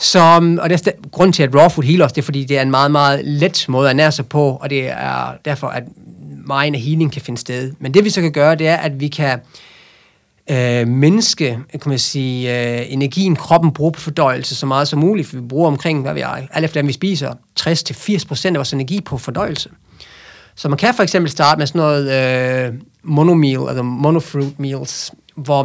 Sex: male